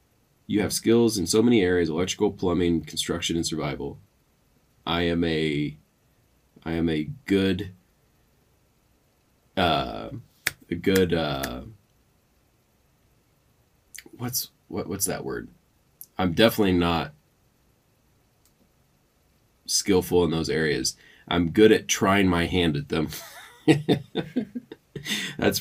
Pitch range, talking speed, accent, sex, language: 80-95 Hz, 100 wpm, American, male, English